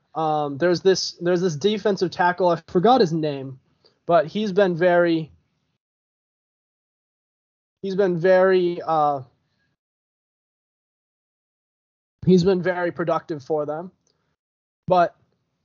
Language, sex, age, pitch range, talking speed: English, male, 20-39, 155-195 Hz, 100 wpm